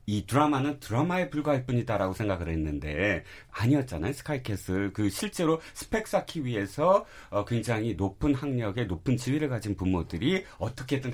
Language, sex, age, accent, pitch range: Korean, male, 40-59, native, 95-155 Hz